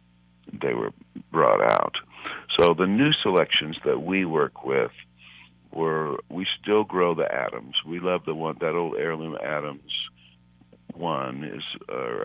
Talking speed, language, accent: 145 wpm, English, American